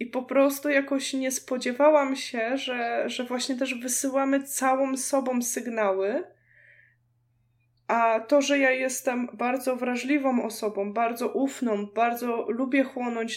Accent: native